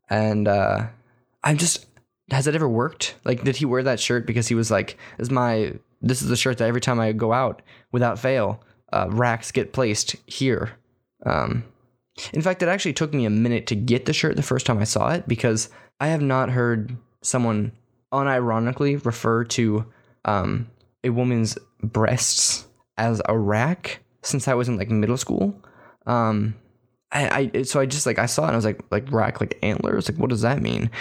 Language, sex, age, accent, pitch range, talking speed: English, male, 10-29, American, 110-135 Hz, 195 wpm